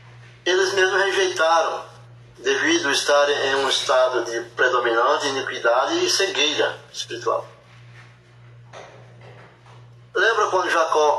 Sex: male